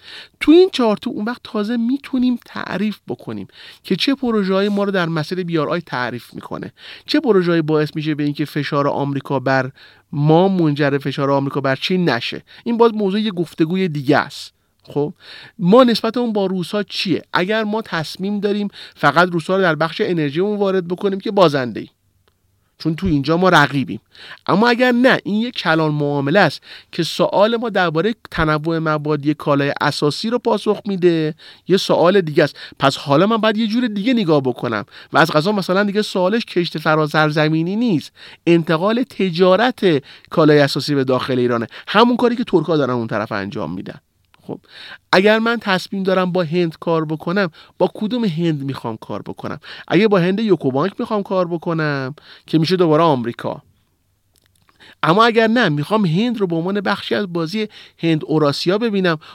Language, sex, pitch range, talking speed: Persian, male, 145-210 Hz, 170 wpm